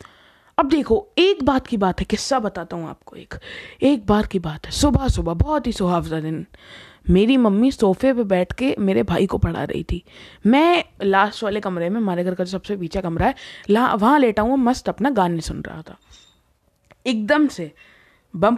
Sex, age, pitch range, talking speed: female, 20-39, 190-280 Hz, 185 wpm